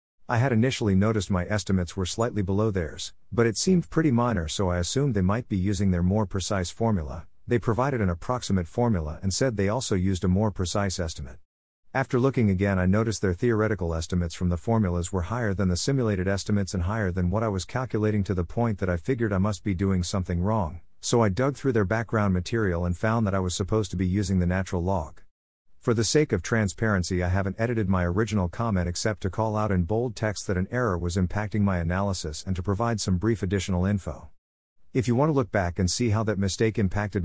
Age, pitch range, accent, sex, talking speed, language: 50-69, 90-110 Hz, American, male, 225 wpm, English